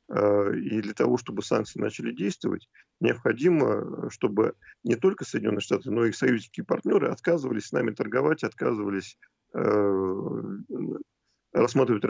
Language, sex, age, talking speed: Russian, male, 40-59, 120 wpm